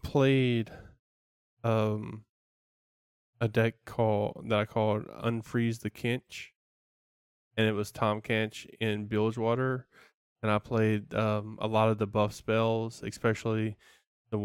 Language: English